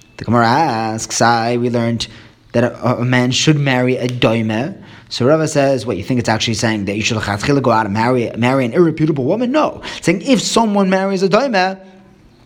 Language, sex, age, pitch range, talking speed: English, male, 20-39, 115-165 Hz, 200 wpm